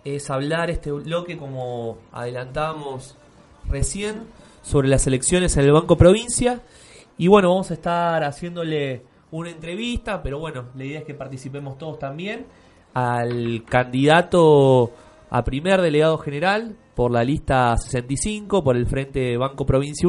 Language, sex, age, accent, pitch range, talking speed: Spanish, male, 20-39, Argentinian, 120-165 Hz, 135 wpm